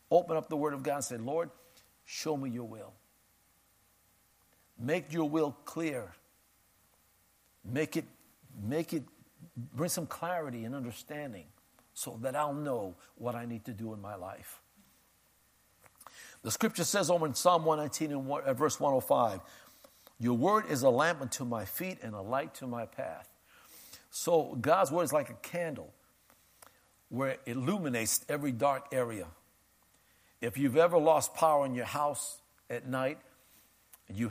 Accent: American